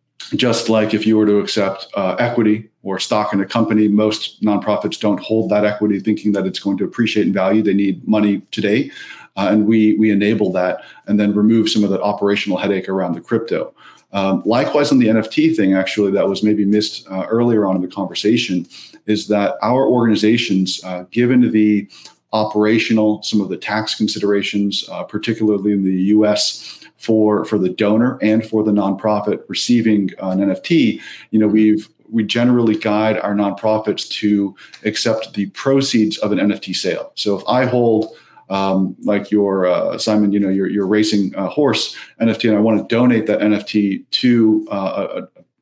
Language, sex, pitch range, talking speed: English, male, 100-110 Hz, 185 wpm